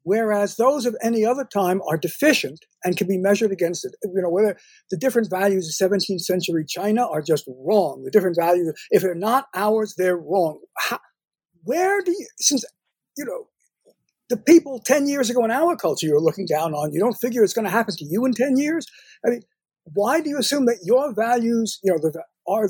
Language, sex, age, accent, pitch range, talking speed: English, male, 50-69, American, 185-255 Hz, 205 wpm